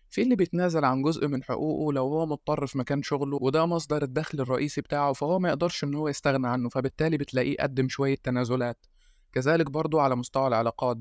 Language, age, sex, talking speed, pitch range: Arabic, 20-39, male, 190 wpm, 130-155 Hz